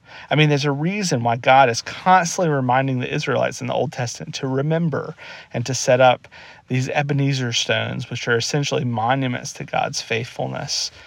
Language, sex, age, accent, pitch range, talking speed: English, male, 40-59, American, 130-160 Hz, 175 wpm